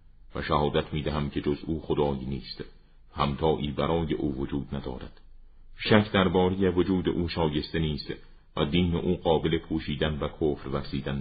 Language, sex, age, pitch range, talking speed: Persian, male, 40-59, 75-90 Hz, 145 wpm